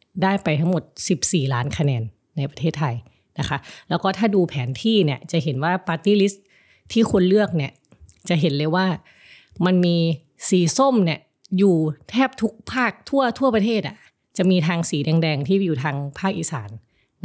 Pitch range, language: 145-190 Hz, Thai